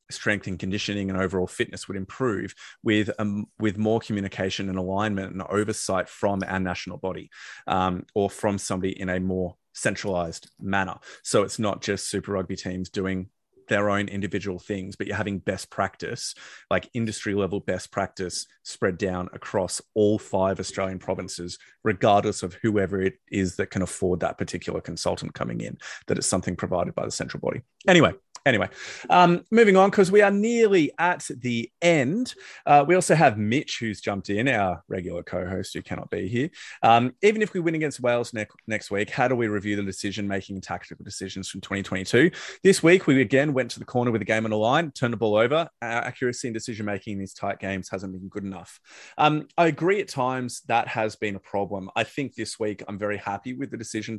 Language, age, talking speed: English, 30-49, 195 wpm